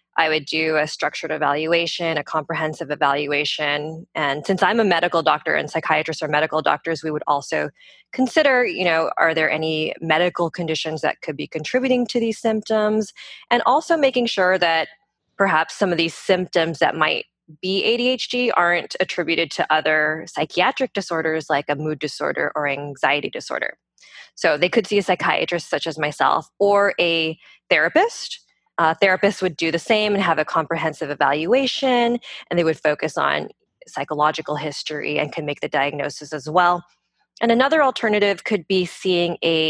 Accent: American